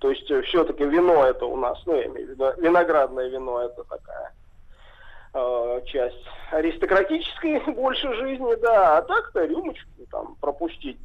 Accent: native